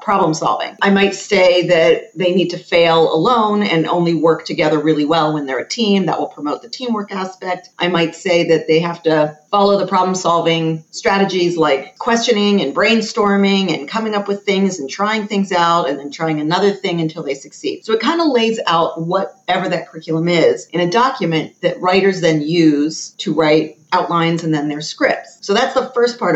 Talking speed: 205 wpm